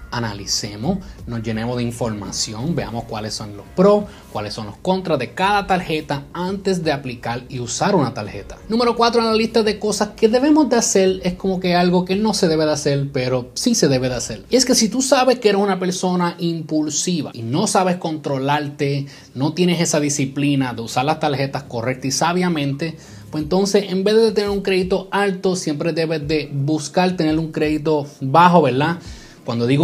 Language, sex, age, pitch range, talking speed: Spanish, male, 30-49, 135-190 Hz, 195 wpm